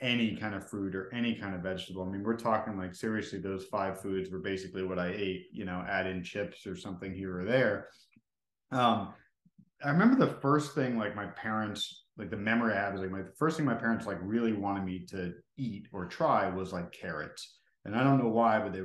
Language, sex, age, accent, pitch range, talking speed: English, male, 30-49, American, 95-125 Hz, 230 wpm